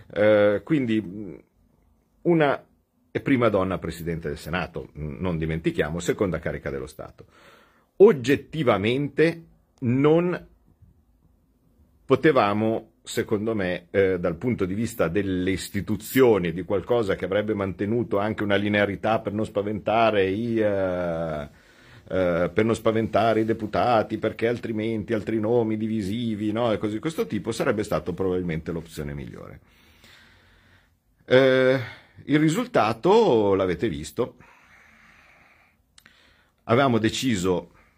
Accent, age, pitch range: native, 50-69, 85-115 Hz